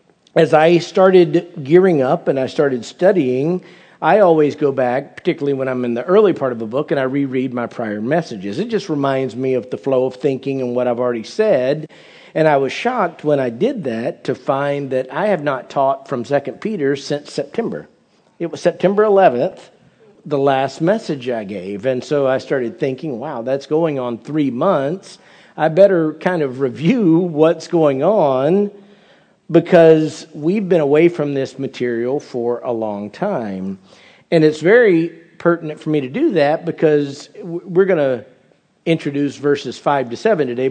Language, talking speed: English, 180 wpm